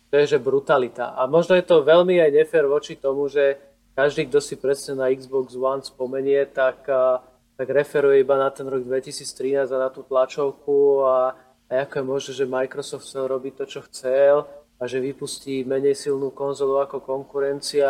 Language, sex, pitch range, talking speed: Slovak, male, 135-150 Hz, 180 wpm